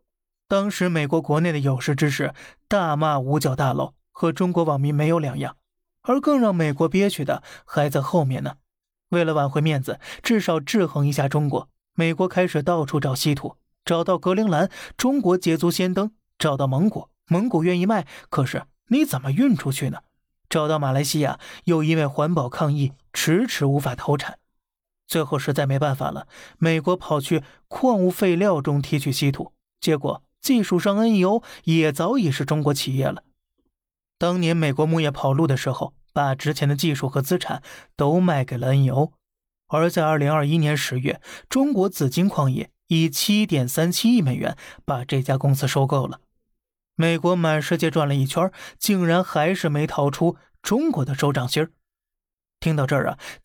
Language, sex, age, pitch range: Chinese, male, 20-39, 145-180 Hz